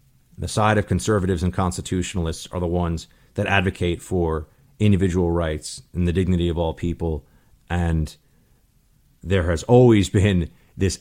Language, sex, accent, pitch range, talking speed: English, male, American, 95-140 Hz, 140 wpm